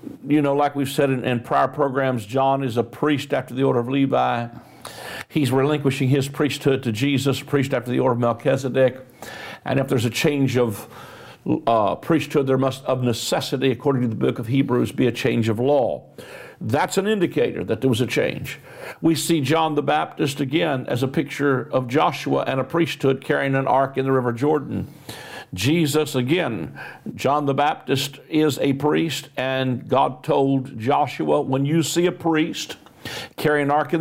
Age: 50-69